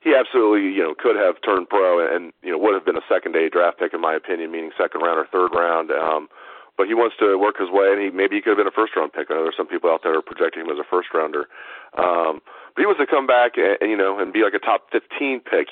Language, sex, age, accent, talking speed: English, male, 40-59, American, 285 wpm